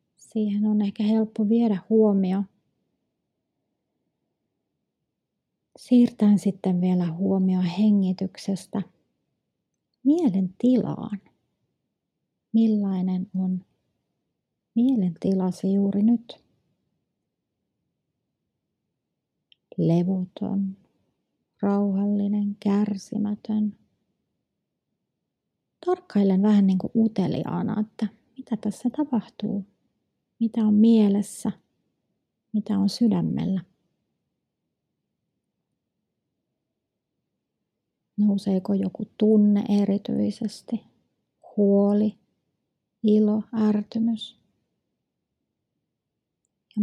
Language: Finnish